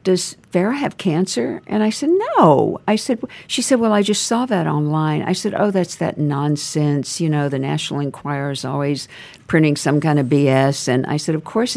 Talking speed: 210 wpm